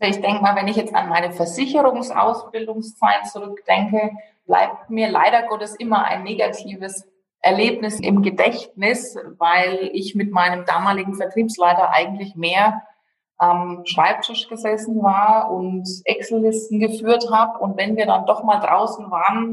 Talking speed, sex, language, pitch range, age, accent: 135 wpm, female, German, 185-225 Hz, 20-39, German